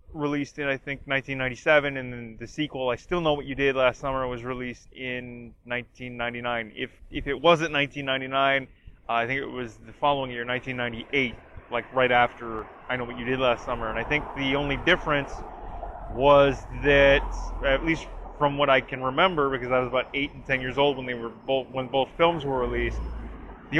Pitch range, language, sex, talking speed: 125-150 Hz, English, male, 200 wpm